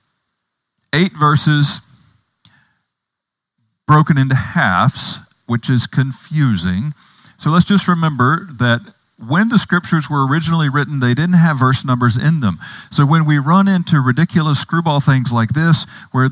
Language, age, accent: English, 40-59, American